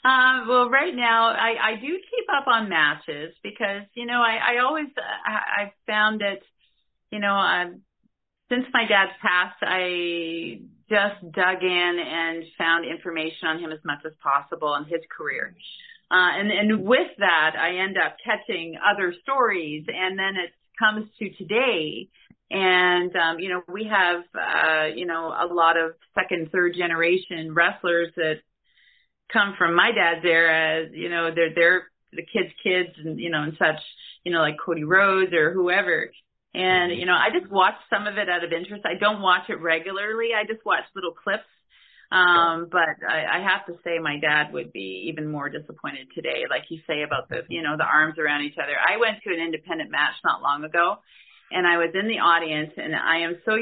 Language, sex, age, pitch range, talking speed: English, female, 40-59, 165-205 Hz, 190 wpm